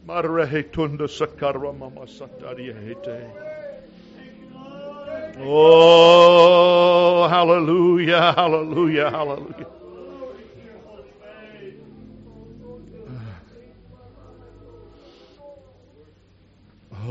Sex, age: male, 60-79